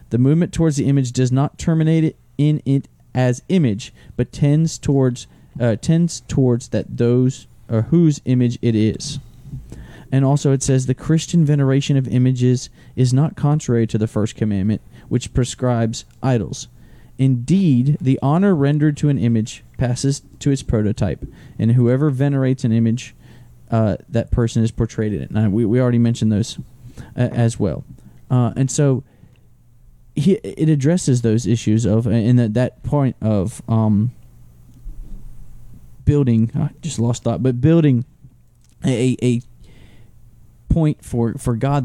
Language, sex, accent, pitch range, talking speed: English, male, American, 115-135 Hz, 150 wpm